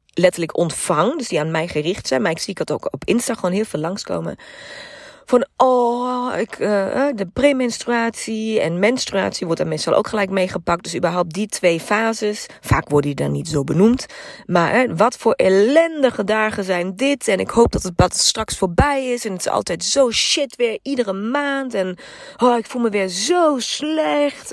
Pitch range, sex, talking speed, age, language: 185-250 Hz, female, 195 wpm, 30-49, Dutch